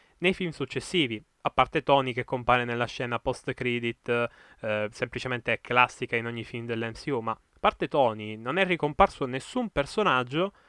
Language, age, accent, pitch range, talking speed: Italian, 20-39, native, 125-175 Hz, 150 wpm